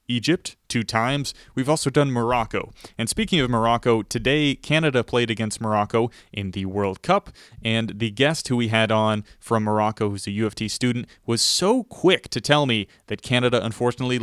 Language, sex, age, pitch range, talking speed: English, male, 30-49, 110-135 Hz, 175 wpm